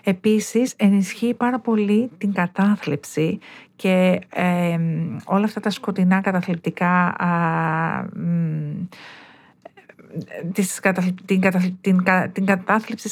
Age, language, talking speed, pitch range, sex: 50-69, Greek, 95 wpm, 180-210 Hz, female